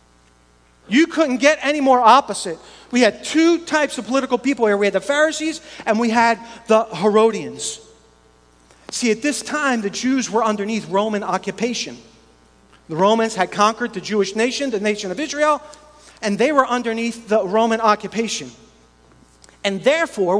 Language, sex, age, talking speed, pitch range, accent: English, male, 40-59, 155 wpm, 190-240 Hz, American